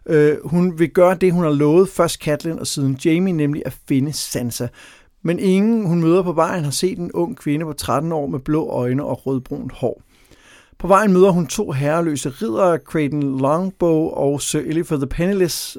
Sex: male